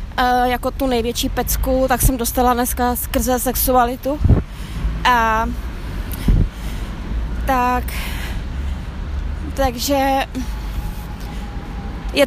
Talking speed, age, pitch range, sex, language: 70 wpm, 20-39, 245-285 Hz, female, Czech